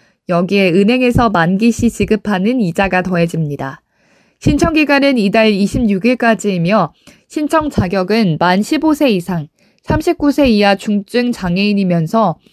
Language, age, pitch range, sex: Korean, 20-39, 200-280 Hz, female